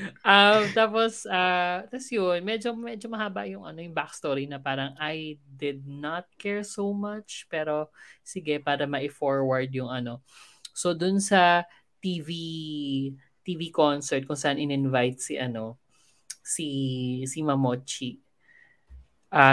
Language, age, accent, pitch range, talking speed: Filipino, 20-39, native, 125-155 Hz, 130 wpm